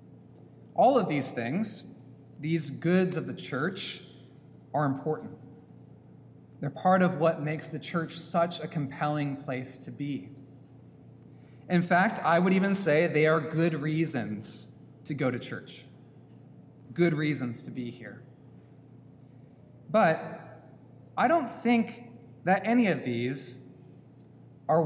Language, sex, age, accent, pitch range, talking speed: English, male, 30-49, American, 140-185 Hz, 125 wpm